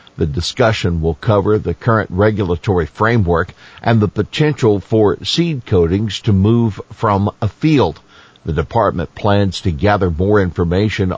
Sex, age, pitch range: male, 50-69, 90-110 Hz